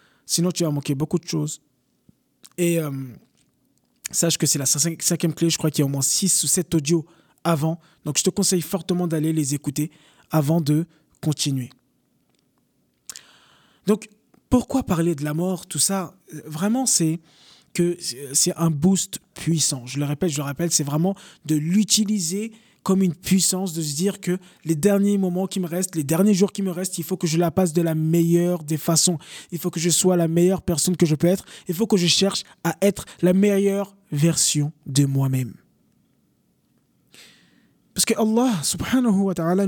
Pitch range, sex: 155-195 Hz, male